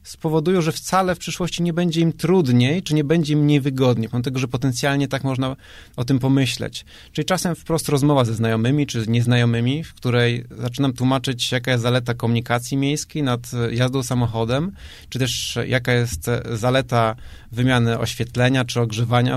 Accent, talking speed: native, 160 wpm